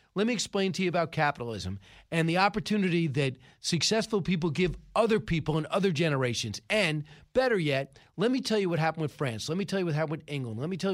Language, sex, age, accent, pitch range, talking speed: English, male, 40-59, American, 140-190 Hz, 225 wpm